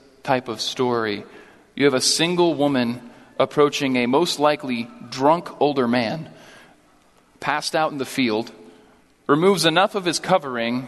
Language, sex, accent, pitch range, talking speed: English, male, American, 125-160 Hz, 140 wpm